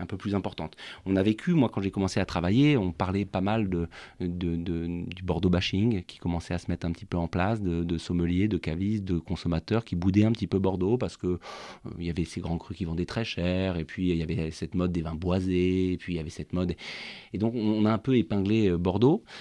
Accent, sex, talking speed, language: French, male, 250 wpm, French